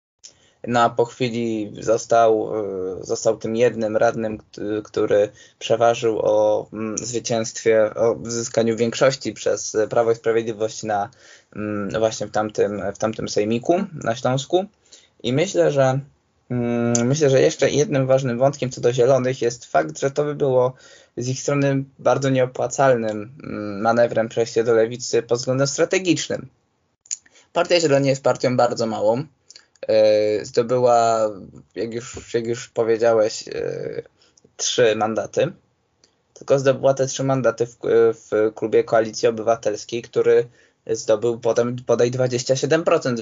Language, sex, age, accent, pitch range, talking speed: Polish, male, 20-39, native, 115-135 Hz, 120 wpm